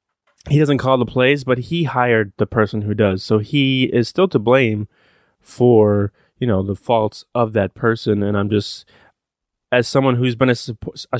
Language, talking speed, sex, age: English, 190 wpm, male, 20-39